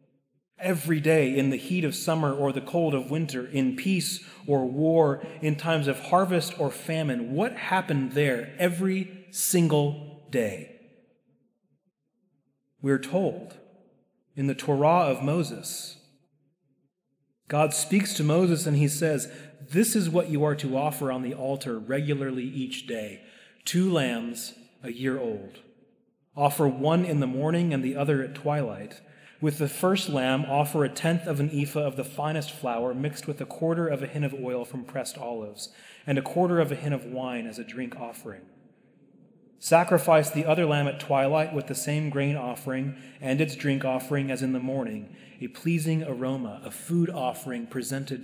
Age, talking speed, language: 30-49, 165 wpm, English